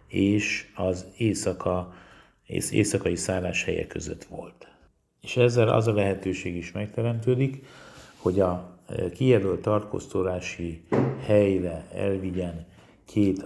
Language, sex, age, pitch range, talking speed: Hungarian, male, 50-69, 90-110 Hz, 105 wpm